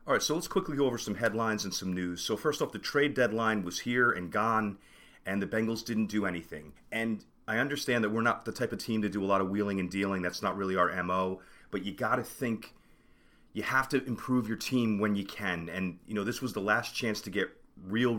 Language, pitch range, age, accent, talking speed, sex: English, 95-120 Hz, 30-49, American, 250 wpm, male